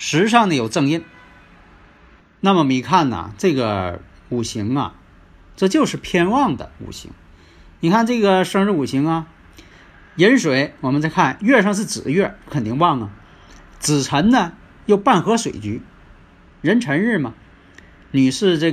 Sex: male